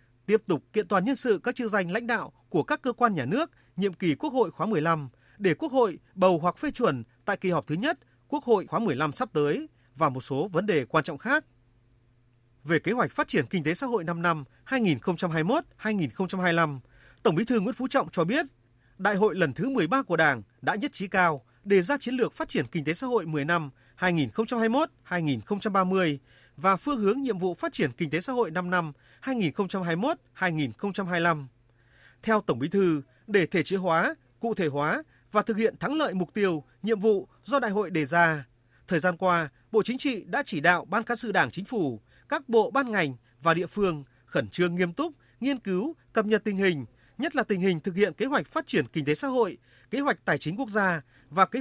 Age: 30-49